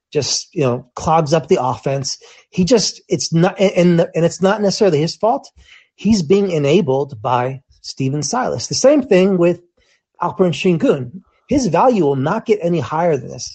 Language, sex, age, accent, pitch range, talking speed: English, male, 30-49, American, 140-195 Hz, 175 wpm